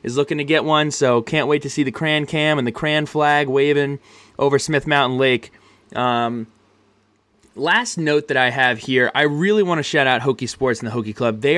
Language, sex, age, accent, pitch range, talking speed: English, male, 20-39, American, 125-160 Hz, 220 wpm